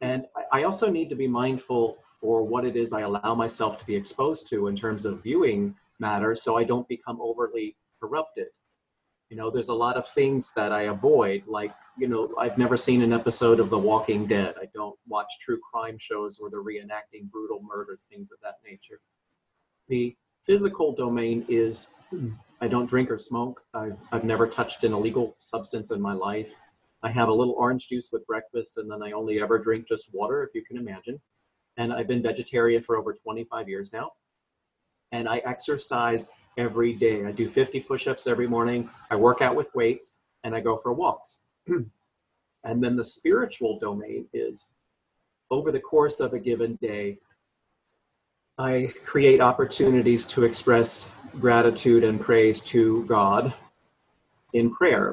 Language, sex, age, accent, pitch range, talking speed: English, male, 40-59, American, 110-125 Hz, 175 wpm